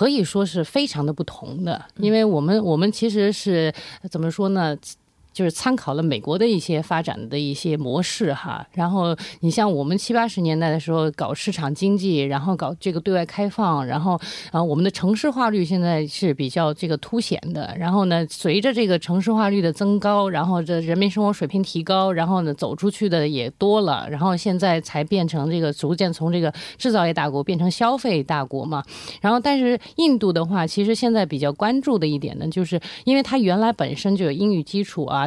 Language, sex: Korean, female